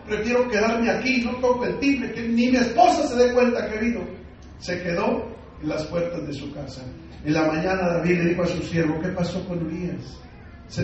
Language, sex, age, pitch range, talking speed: English, male, 40-59, 170-250 Hz, 205 wpm